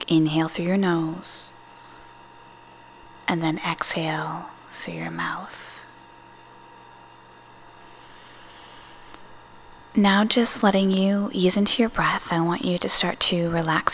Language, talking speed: English, 110 wpm